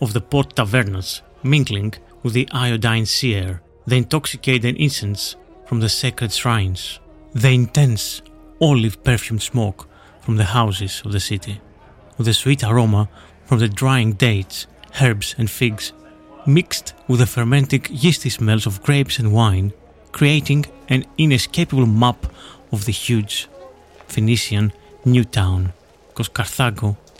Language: English